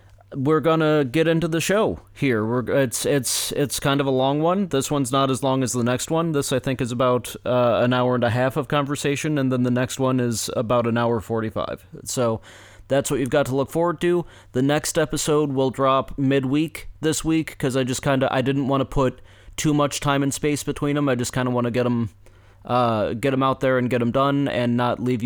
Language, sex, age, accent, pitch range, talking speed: English, male, 30-49, American, 110-145 Hz, 240 wpm